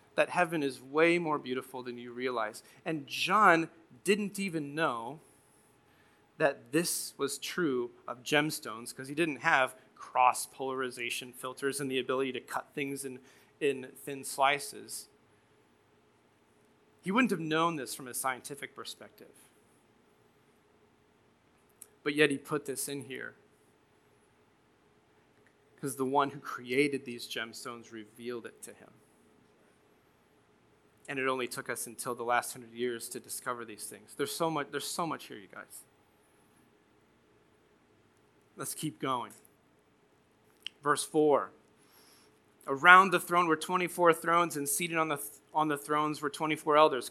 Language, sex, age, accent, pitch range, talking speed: English, male, 30-49, American, 130-155 Hz, 140 wpm